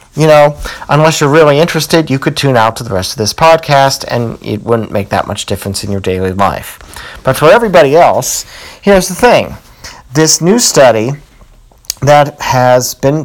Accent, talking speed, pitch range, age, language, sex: American, 180 wpm, 115-140 Hz, 40-59, English, male